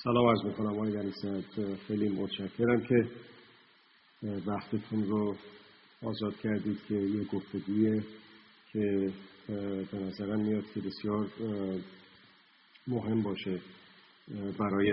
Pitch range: 95-110 Hz